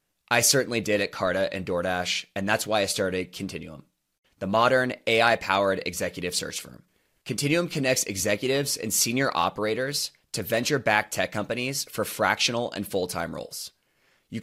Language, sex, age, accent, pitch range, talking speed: English, male, 20-39, American, 100-130 Hz, 145 wpm